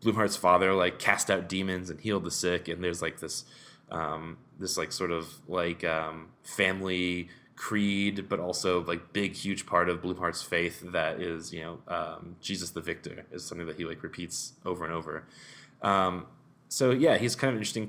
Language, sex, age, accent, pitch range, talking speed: English, male, 20-39, American, 90-105 Hz, 190 wpm